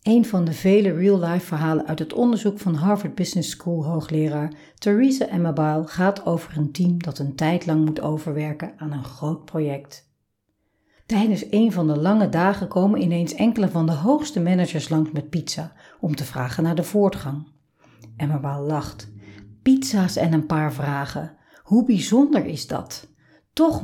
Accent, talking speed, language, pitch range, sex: Dutch, 160 wpm, Dutch, 150-195 Hz, female